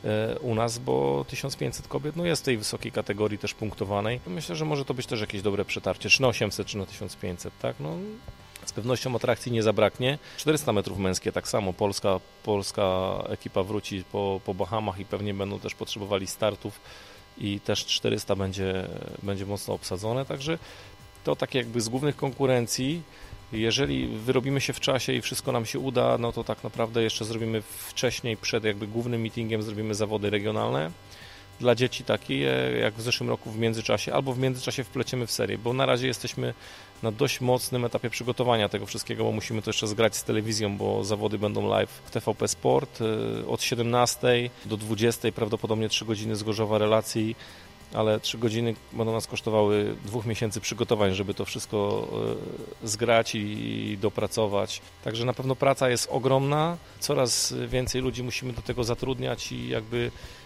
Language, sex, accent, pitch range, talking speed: Polish, male, native, 100-125 Hz, 165 wpm